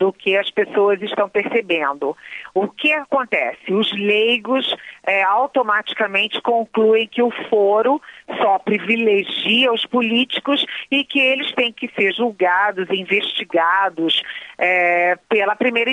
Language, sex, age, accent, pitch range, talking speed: Portuguese, female, 40-59, Brazilian, 185-250 Hz, 115 wpm